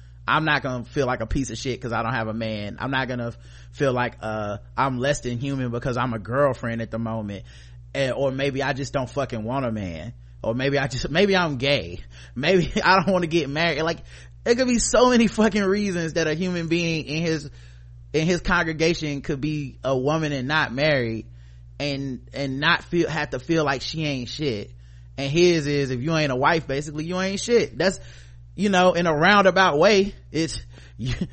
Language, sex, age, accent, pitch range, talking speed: English, male, 30-49, American, 120-180 Hz, 215 wpm